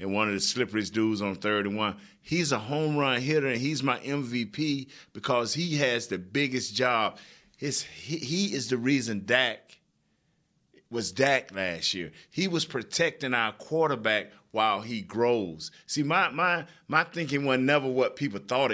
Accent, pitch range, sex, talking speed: American, 115-150 Hz, male, 165 wpm